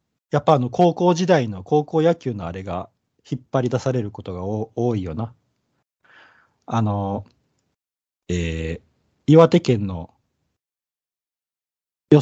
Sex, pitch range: male, 105-145 Hz